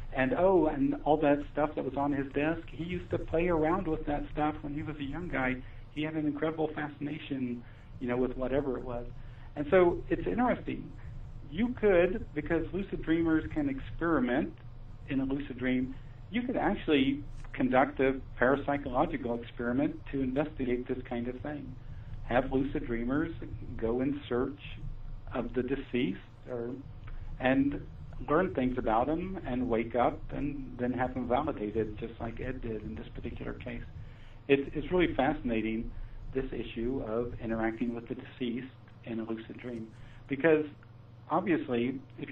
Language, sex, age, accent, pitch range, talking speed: English, male, 50-69, American, 115-140 Hz, 160 wpm